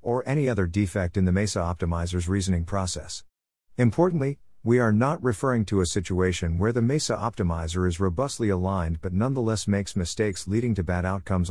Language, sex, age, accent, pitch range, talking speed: English, male, 50-69, American, 90-115 Hz, 170 wpm